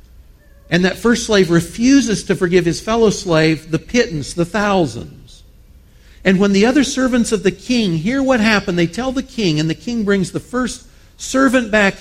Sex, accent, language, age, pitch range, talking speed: male, American, English, 50-69, 135-205 Hz, 185 wpm